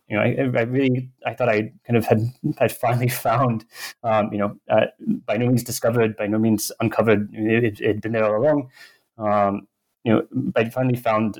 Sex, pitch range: male, 105-120 Hz